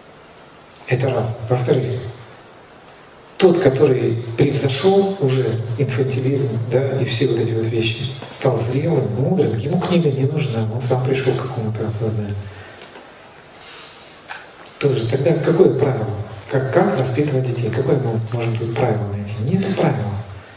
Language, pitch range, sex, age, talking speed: Russian, 110-140 Hz, male, 40-59, 125 wpm